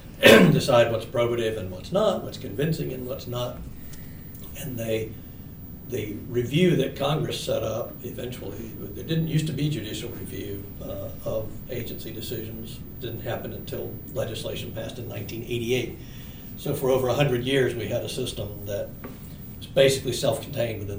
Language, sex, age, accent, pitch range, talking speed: English, male, 60-79, American, 110-130 Hz, 155 wpm